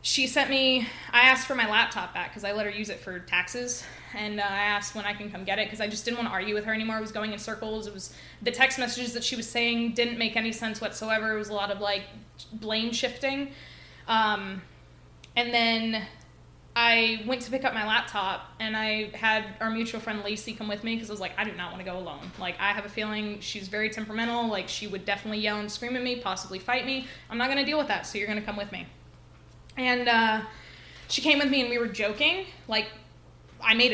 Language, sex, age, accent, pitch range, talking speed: English, female, 20-39, American, 210-245 Hz, 250 wpm